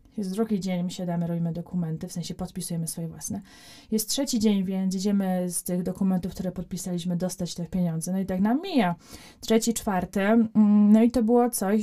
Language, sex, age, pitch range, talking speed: Polish, female, 20-39, 190-235 Hz, 190 wpm